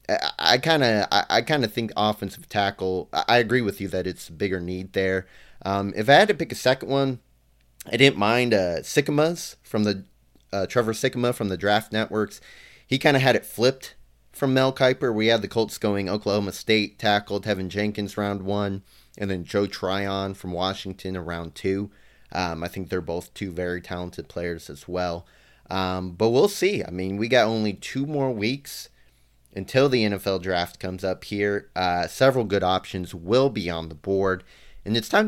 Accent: American